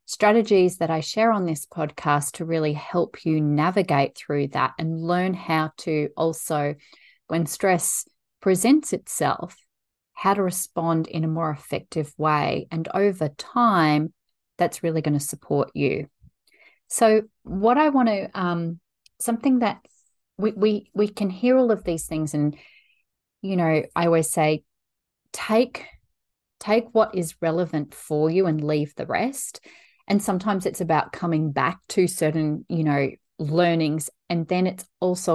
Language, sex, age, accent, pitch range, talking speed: English, female, 30-49, Australian, 155-195 Hz, 150 wpm